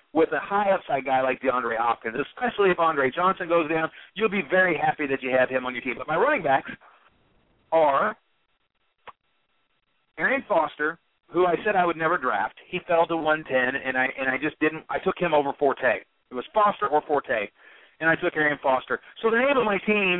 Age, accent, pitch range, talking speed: 40-59, American, 135-195 Hz, 210 wpm